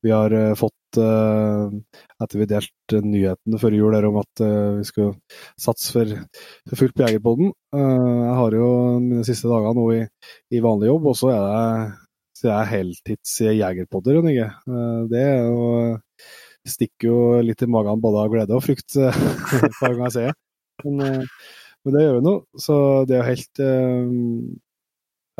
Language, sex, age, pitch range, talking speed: English, male, 20-39, 110-125 Hz, 170 wpm